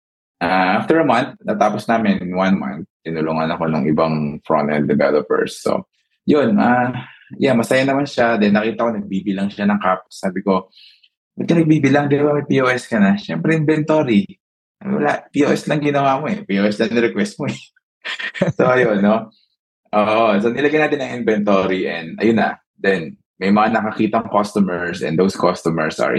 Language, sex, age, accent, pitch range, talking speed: Filipino, male, 20-39, native, 95-125 Hz, 170 wpm